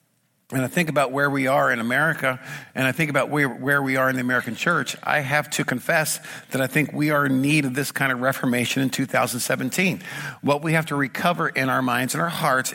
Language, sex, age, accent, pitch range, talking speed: English, male, 50-69, American, 130-155 Hz, 235 wpm